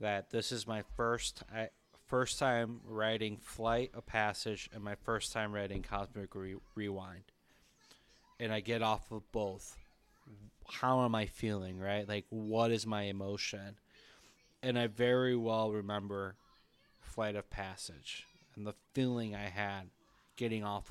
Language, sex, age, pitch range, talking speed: English, male, 20-39, 100-115 Hz, 145 wpm